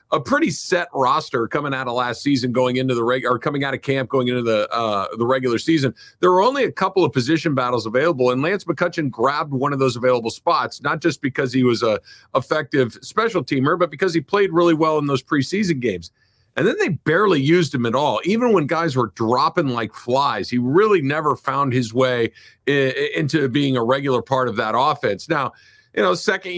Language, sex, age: English, male, 50-69